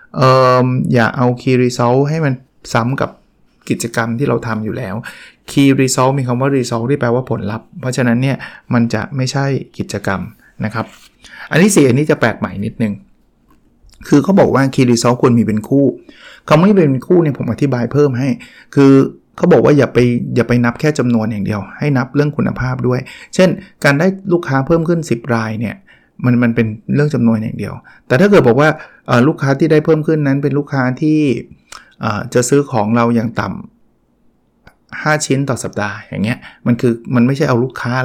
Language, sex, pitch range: Thai, male, 120-145 Hz